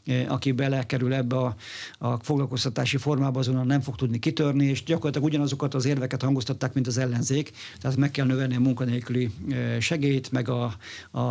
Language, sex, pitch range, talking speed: Hungarian, male, 125-140 Hz, 165 wpm